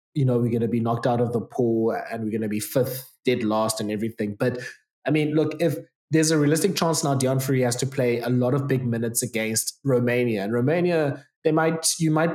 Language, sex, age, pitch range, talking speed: English, male, 20-39, 115-140 Hz, 230 wpm